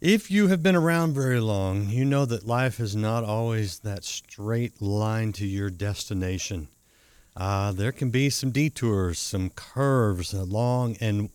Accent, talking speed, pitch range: American, 165 wpm, 100-120 Hz